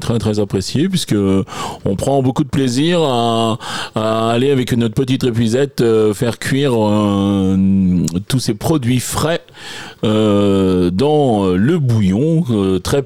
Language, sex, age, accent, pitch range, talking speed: French, male, 30-49, French, 100-140 Hz, 140 wpm